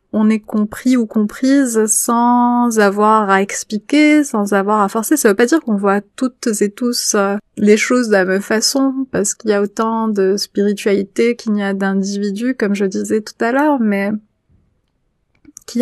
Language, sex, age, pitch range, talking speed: French, female, 30-49, 205-240 Hz, 180 wpm